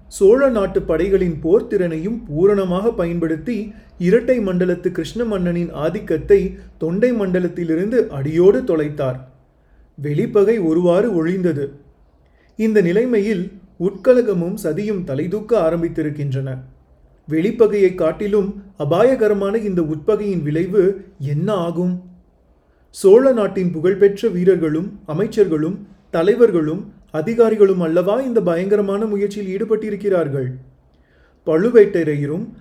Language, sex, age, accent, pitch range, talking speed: Tamil, male, 30-49, native, 160-210 Hz, 85 wpm